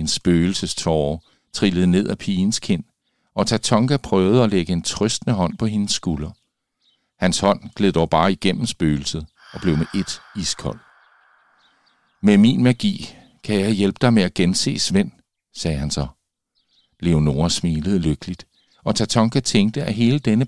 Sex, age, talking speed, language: male, 50-69, 155 wpm, Danish